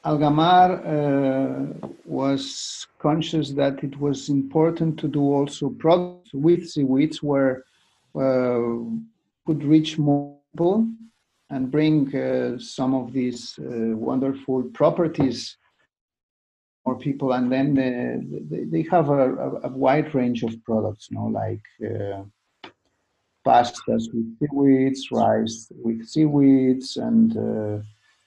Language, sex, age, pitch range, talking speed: English, male, 50-69, 125-160 Hz, 115 wpm